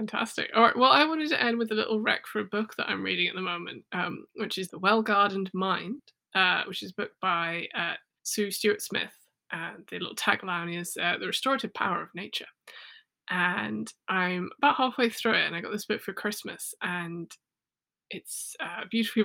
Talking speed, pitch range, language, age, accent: 200 wpm, 180-225 Hz, English, 20-39, British